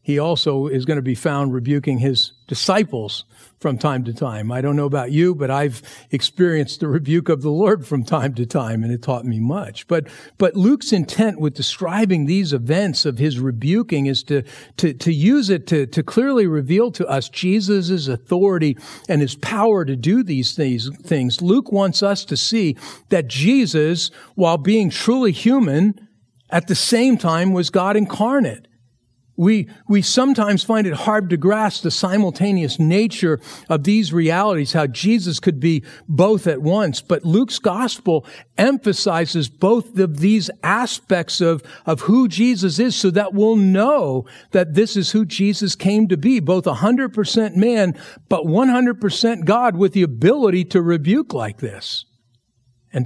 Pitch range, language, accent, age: 140-205 Hz, English, American, 50-69